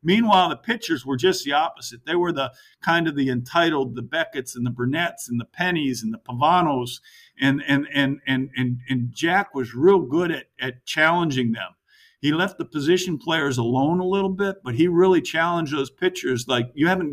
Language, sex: English, male